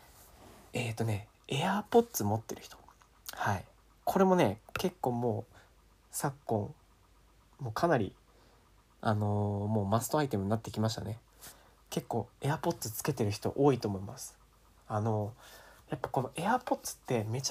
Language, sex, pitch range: Japanese, male, 110-145 Hz